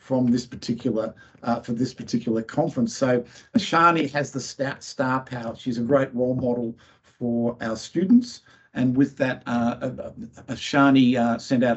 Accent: Australian